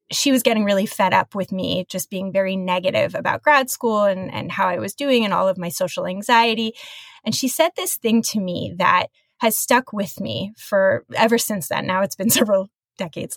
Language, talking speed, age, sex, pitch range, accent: English, 215 wpm, 20-39, female, 190-245 Hz, American